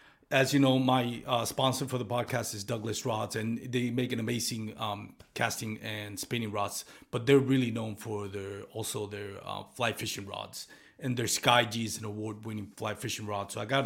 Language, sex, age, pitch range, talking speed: English, male, 30-49, 115-140 Hz, 200 wpm